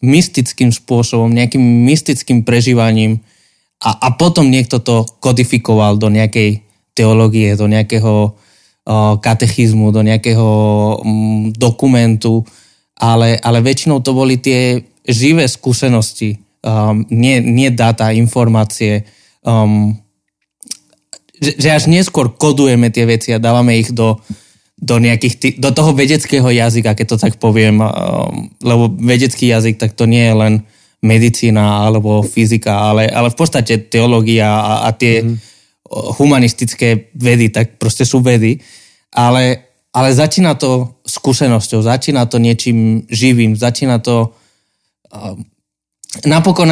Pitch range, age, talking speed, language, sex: 110-130 Hz, 20-39, 120 wpm, Slovak, male